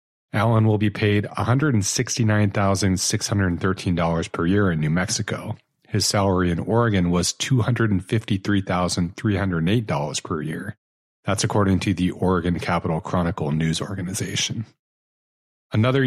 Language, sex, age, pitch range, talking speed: English, male, 40-59, 95-115 Hz, 105 wpm